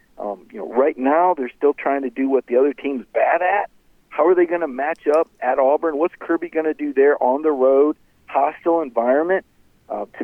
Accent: American